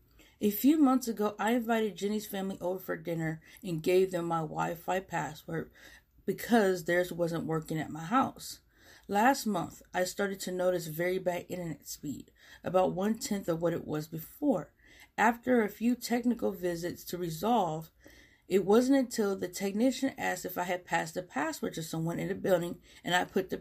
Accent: American